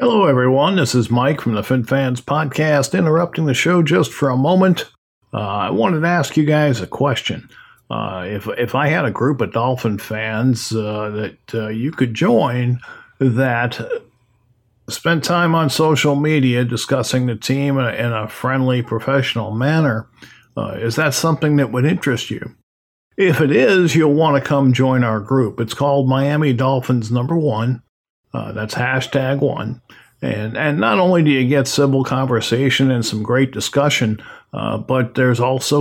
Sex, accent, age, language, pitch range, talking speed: male, American, 50-69, English, 120-145 Hz, 175 wpm